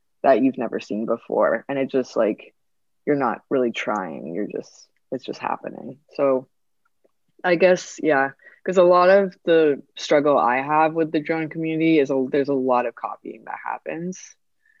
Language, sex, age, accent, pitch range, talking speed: English, female, 20-39, American, 125-150 Hz, 175 wpm